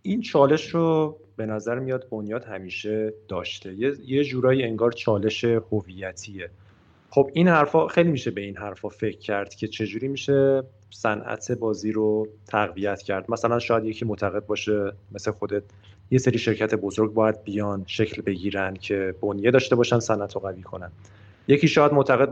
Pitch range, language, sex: 105-135 Hz, Persian, male